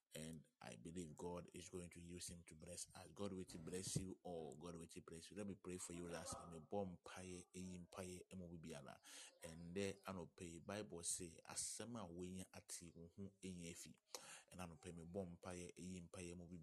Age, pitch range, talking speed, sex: 30-49, 85-95 Hz, 150 wpm, male